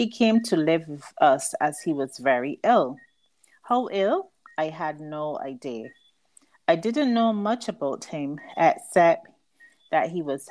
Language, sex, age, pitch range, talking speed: English, female, 30-49, 155-225 Hz, 155 wpm